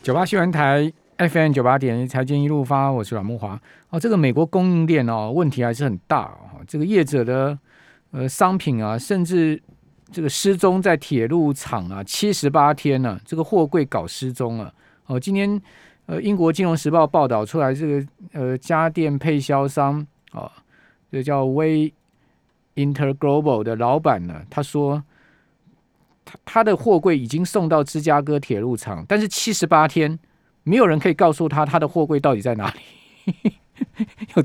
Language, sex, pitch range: Chinese, male, 135-175 Hz